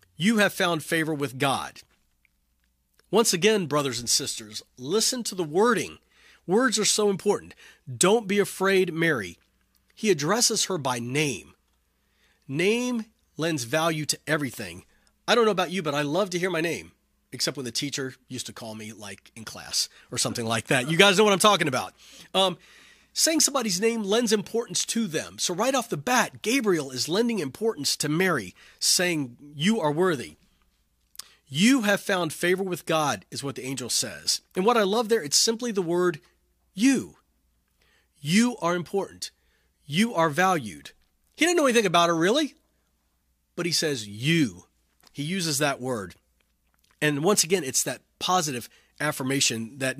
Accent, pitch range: American, 120-200 Hz